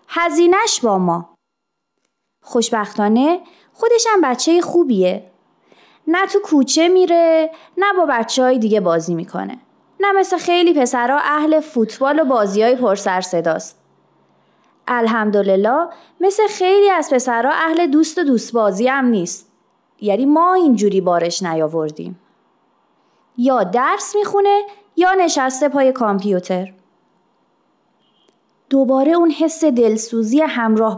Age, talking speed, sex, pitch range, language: 30-49, 110 wpm, female, 215-325 Hz, Persian